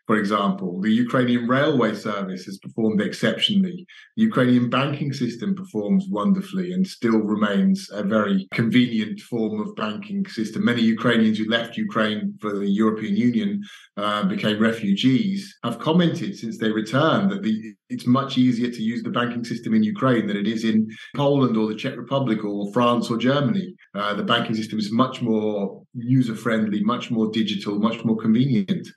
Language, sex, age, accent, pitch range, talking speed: English, male, 30-49, British, 110-140 Hz, 170 wpm